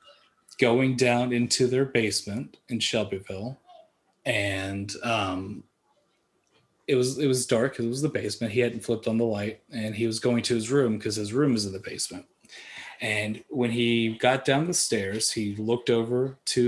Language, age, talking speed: English, 30-49, 175 wpm